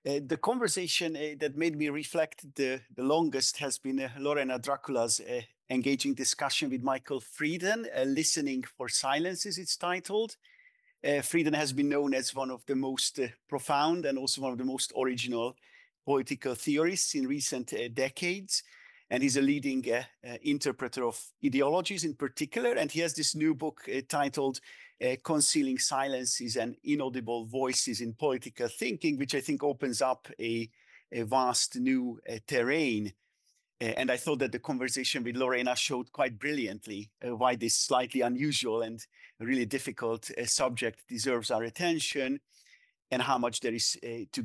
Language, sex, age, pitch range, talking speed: English, male, 50-69, 125-160 Hz, 165 wpm